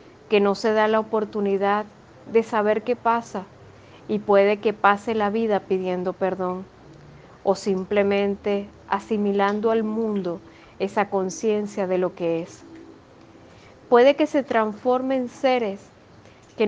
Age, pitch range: 40-59, 195-230 Hz